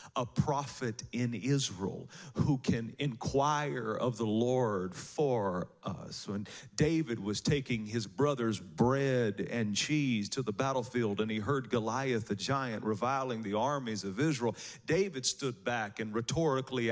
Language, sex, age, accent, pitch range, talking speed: English, male, 40-59, American, 115-150 Hz, 140 wpm